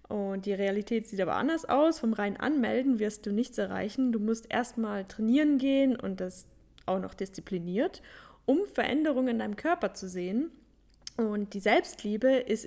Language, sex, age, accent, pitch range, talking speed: German, female, 10-29, German, 205-270 Hz, 165 wpm